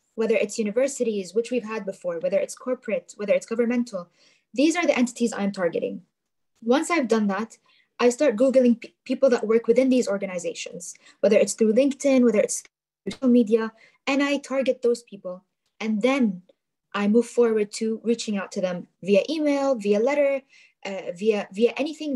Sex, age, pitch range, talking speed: female, 20-39, 205-265 Hz, 175 wpm